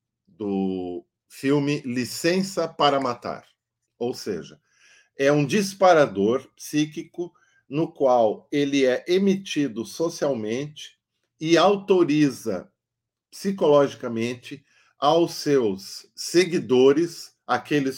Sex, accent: male, Brazilian